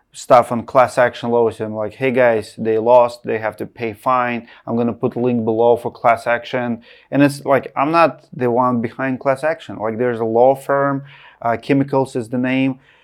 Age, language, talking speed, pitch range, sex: 30-49, English, 205 wpm, 125-160 Hz, male